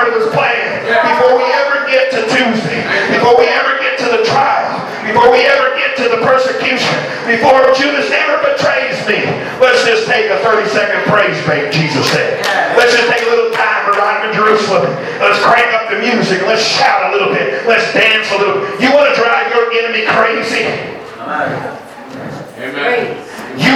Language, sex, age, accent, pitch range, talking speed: English, male, 40-59, American, 225-270 Hz, 180 wpm